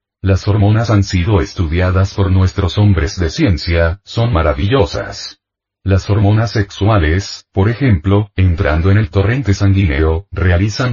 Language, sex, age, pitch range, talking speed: Spanish, male, 40-59, 90-100 Hz, 125 wpm